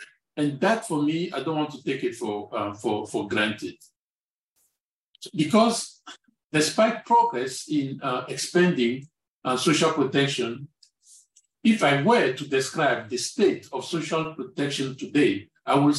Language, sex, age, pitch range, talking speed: English, male, 50-69, 130-175 Hz, 140 wpm